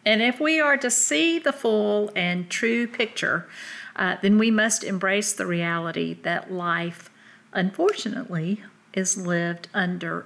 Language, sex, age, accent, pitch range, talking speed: English, female, 50-69, American, 180-235 Hz, 140 wpm